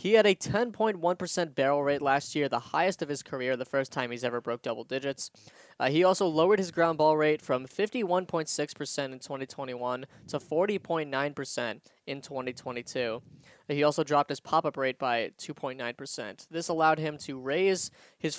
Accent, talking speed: American, 175 wpm